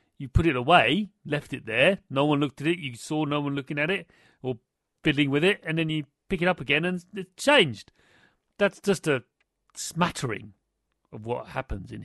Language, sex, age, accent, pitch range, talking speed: English, male, 40-59, British, 125-185 Hz, 205 wpm